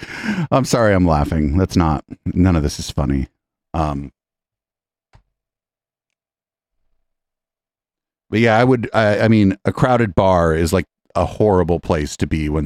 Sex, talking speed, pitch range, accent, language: male, 140 wpm, 85-110 Hz, American, English